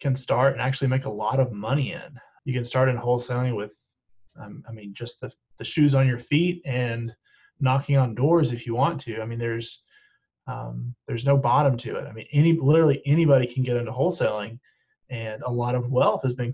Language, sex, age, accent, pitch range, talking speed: English, male, 30-49, American, 115-140 Hz, 215 wpm